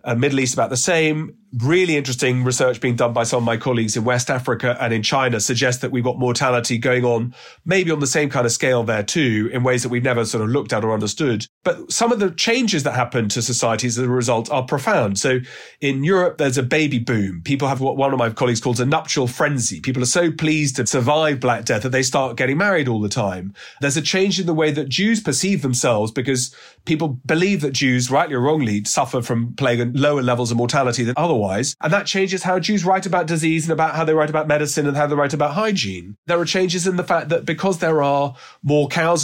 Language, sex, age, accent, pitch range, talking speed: English, male, 30-49, British, 120-160 Hz, 240 wpm